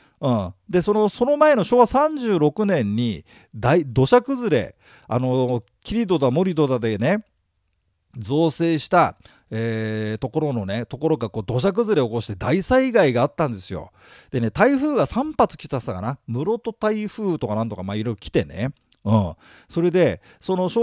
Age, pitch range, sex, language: 40-59, 115-195 Hz, male, Japanese